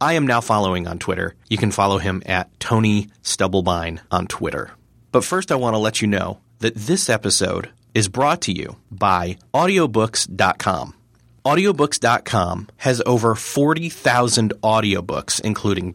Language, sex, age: English, male, 30-49